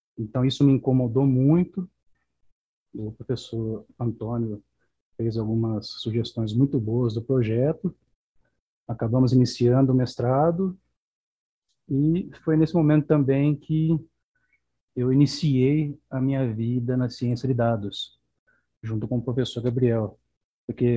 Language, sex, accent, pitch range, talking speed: Portuguese, male, Brazilian, 115-140 Hz, 115 wpm